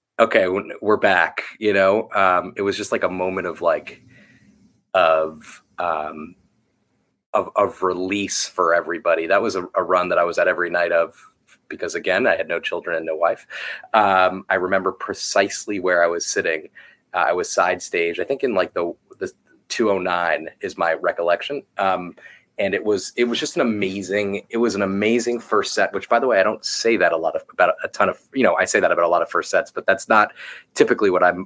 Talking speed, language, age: 215 wpm, English, 30-49